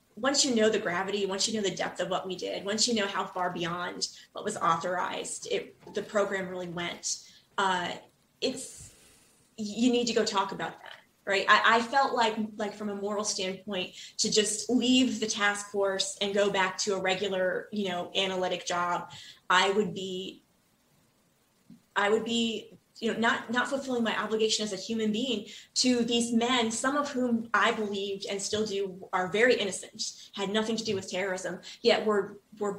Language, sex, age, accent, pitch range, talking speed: English, female, 20-39, American, 190-225 Hz, 190 wpm